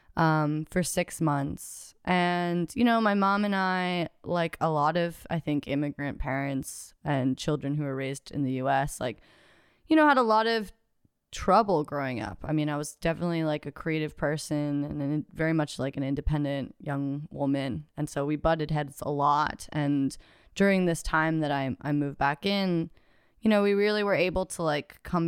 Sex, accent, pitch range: female, American, 140-175 Hz